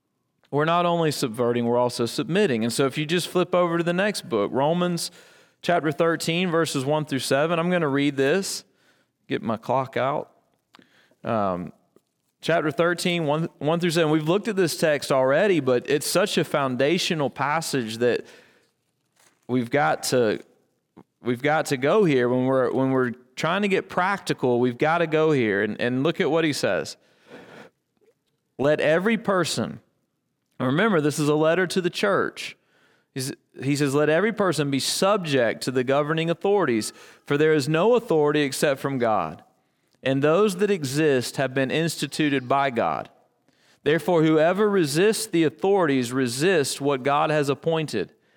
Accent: American